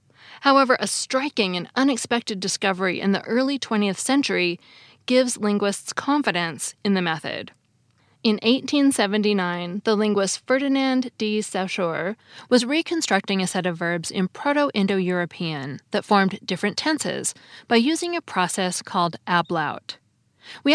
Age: 20-39